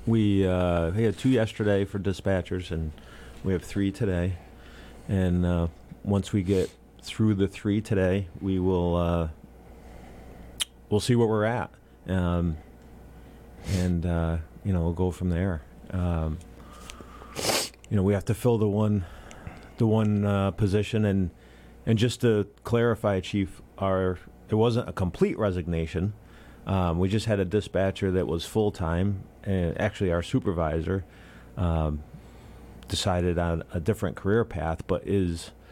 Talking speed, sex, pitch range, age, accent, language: 145 wpm, male, 85-100 Hz, 40-59, American, English